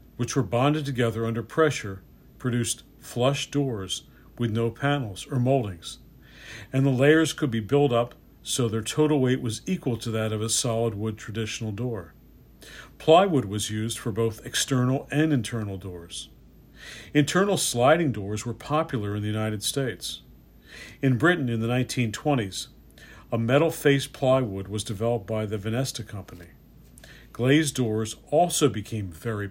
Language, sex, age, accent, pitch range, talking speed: English, male, 50-69, American, 110-140 Hz, 145 wpm